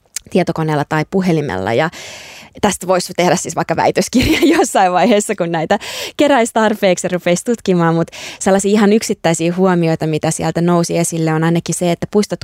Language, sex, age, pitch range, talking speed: Finnish, female, 20-39, 160-185 Hz, 160 wpm